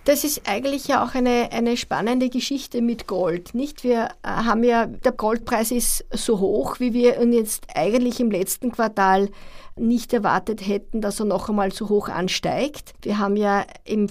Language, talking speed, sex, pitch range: German, 180 wpm, female, 205-245 Hz